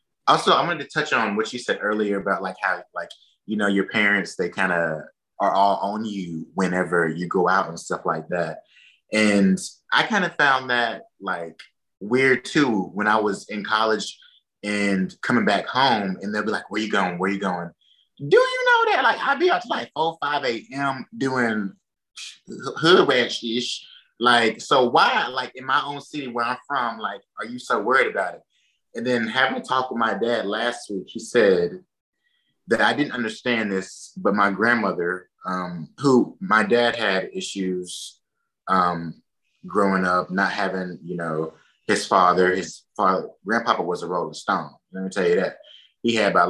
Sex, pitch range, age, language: male, 95-120 Hz, 20-39, English